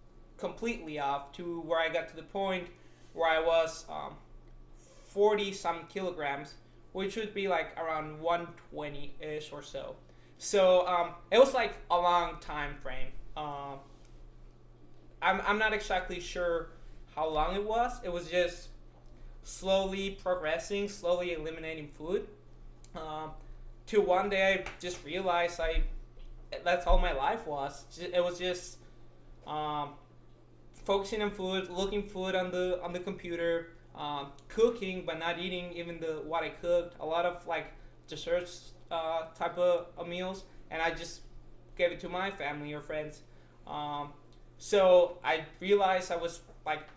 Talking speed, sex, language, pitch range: 150 wpm, male, English, 150-180 Hz